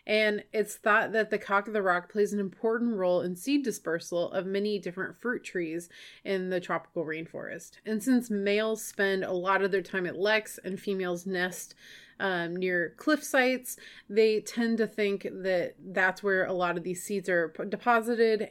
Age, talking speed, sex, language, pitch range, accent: 30-49, 185 wpm, female, English, 180-220 Hz, American